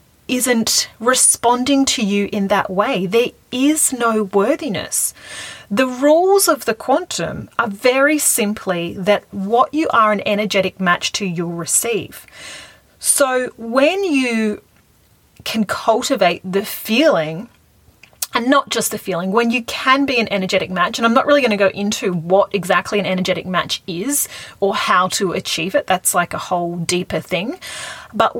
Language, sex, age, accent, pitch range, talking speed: English, female, 30-49, Australian, 195-265 Hz, 155 wpm